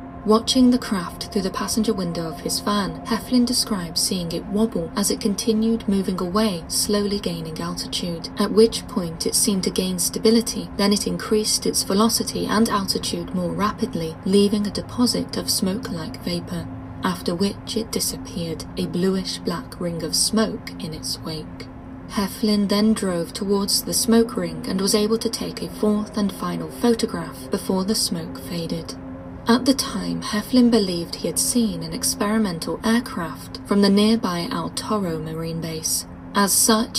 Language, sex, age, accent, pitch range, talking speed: English, female, 30-49, British, 175-225 Hz, 160 wpm